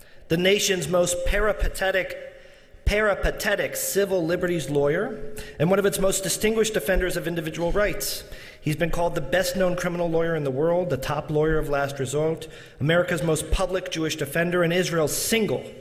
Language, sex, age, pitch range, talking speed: English, male, 40-59, 145-185 Hz, 165 wpm